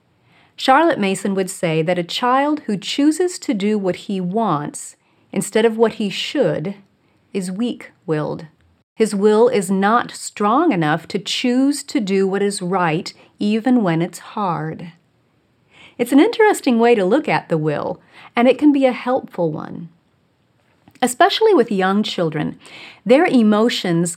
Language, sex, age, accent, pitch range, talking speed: English, female, 40-59, American, 175-250 Hz, 150 wpm